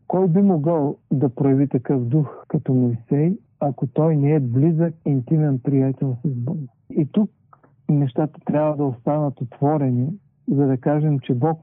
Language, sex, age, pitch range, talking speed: Bulgarian, male, 50-69, 135-165 Hz, 155 wpm